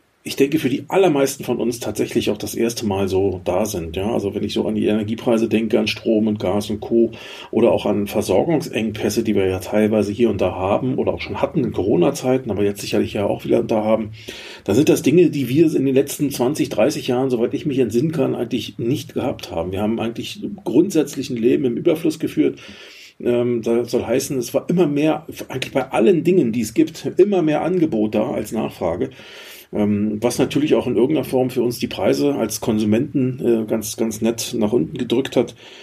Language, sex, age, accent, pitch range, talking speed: German, male, 40-59, German, 110-135 Hz, 210 wpm